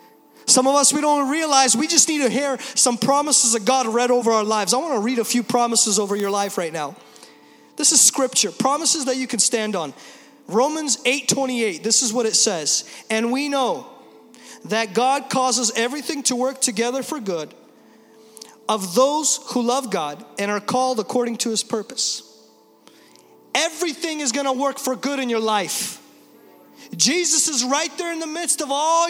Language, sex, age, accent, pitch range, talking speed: English, male, 30-49, American, 225-310 Hz, 185 wpm